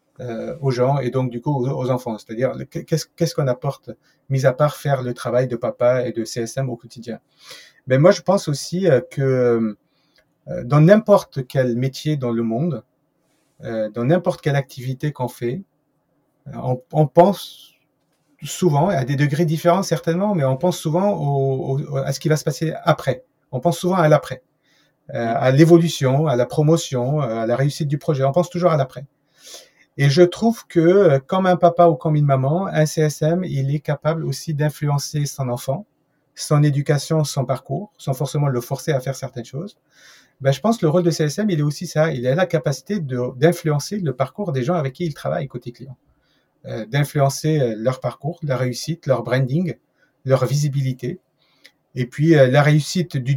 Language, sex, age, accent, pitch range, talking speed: French, male, 40-59, French, 130-160 Hz, 195 wpm